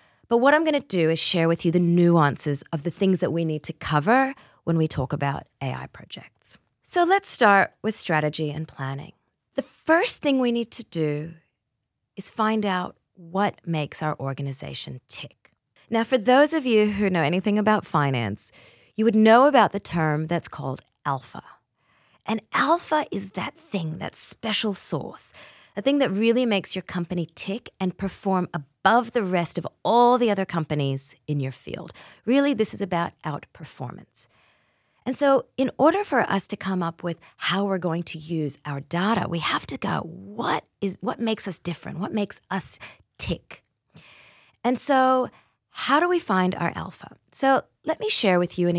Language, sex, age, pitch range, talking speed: English, female, 30-49, 155-225 Hz, 180 wpm